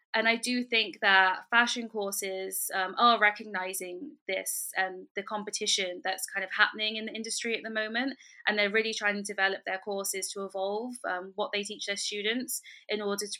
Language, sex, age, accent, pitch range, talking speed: German, female, 10-29, British, 190-225 Hz, 195 wpm